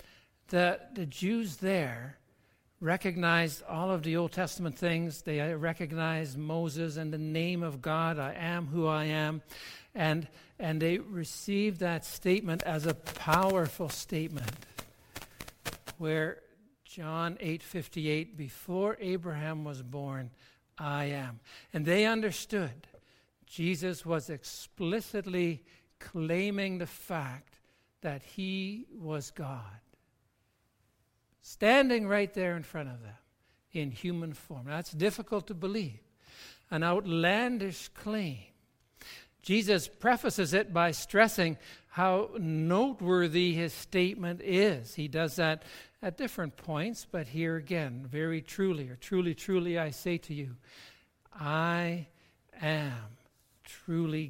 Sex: male